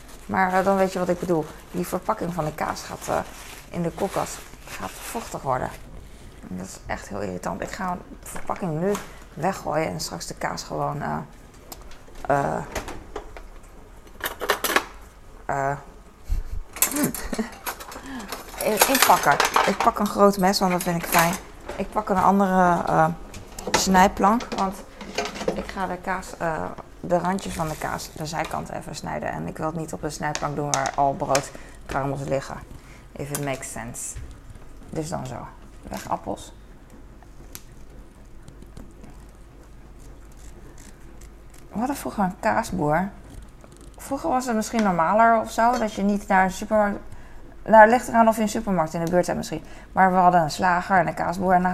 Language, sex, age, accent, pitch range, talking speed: Dutch, female, 20-39, Dutch, 145-195 Hz, 155 wpm